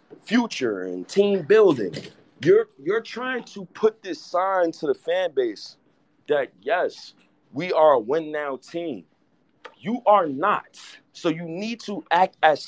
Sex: male